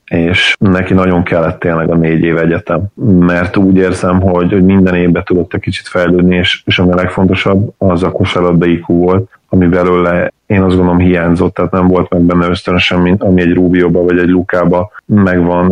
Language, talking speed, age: Hungarian, 180 wpm, 30-49